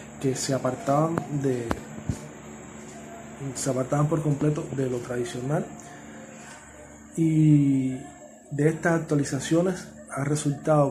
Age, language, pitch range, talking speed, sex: 30-49, English, 130-150 Hz, 95 wpm, male